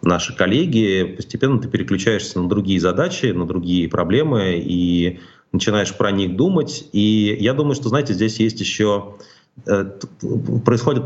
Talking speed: 135 wpm